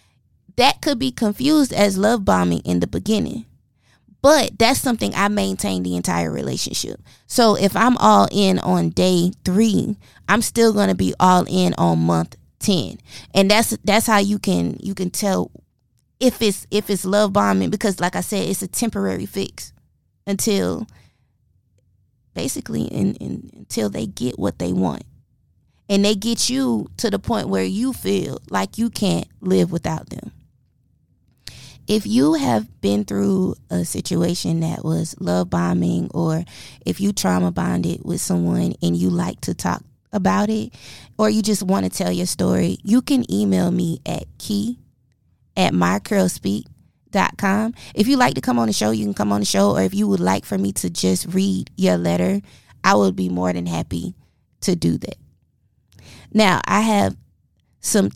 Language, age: English, 20-39